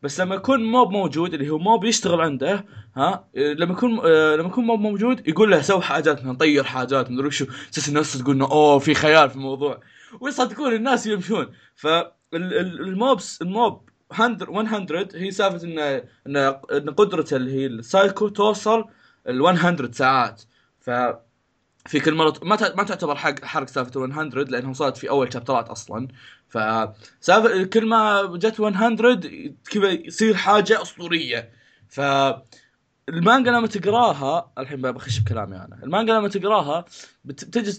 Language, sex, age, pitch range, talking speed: Arabic, male, 20-39, 135-200 Hz, 140 wpm